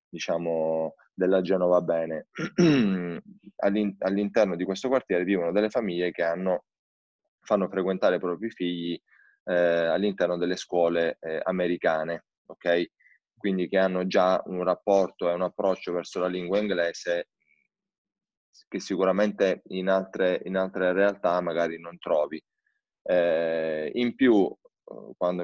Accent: native